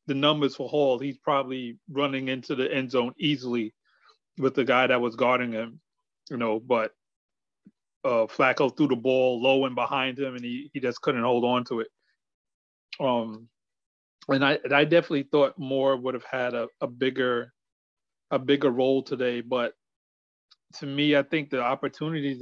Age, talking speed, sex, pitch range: 30-49, 175 wpm, male, 120-140 Hz